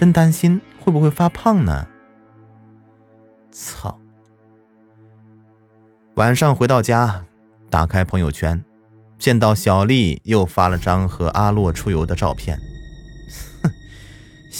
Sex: male